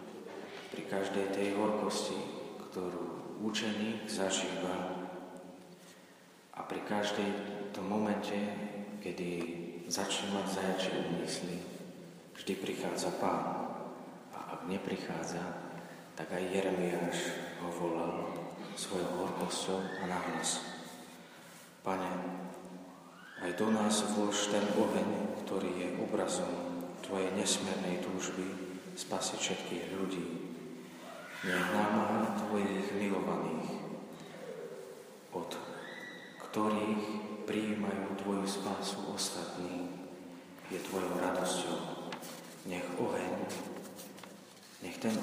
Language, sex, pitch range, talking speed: Slovak, male, 90-100 Hz, 85 wpm